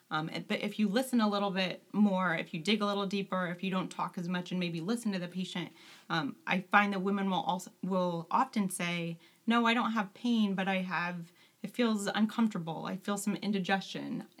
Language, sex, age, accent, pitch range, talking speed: English, female, 30-49, American, 175-205 Hz, 215 wpm